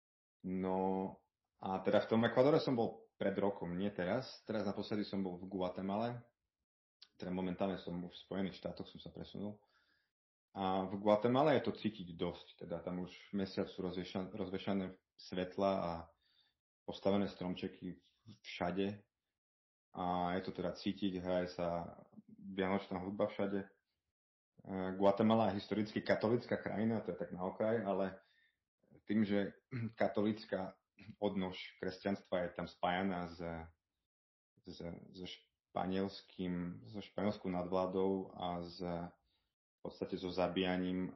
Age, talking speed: 30-49, 125 wpm